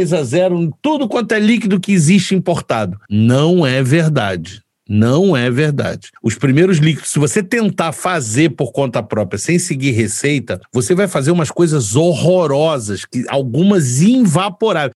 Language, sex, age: Portuguese, male, 50-69